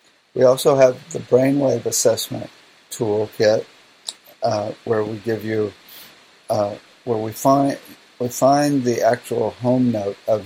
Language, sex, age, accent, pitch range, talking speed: English, male, 50-69, American, 105-125 Hz, 130 wpm